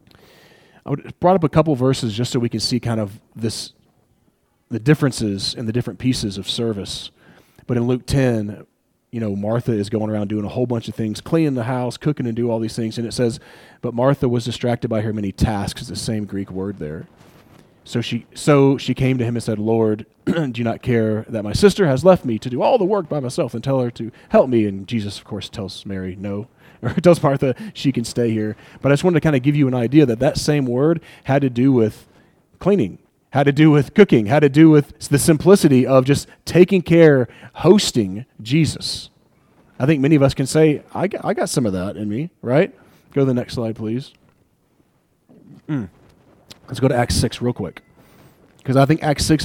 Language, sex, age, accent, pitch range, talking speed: English, male, 30-49, American, 110-145 Hz, 225 wpm